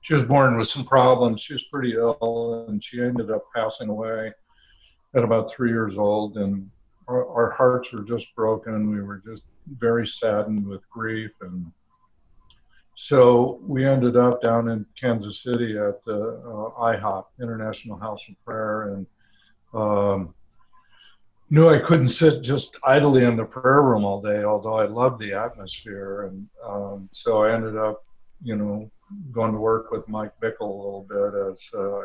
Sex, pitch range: male, 100-120 Hz